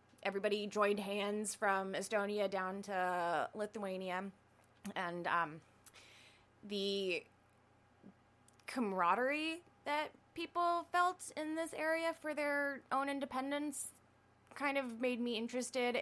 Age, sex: 20-39, female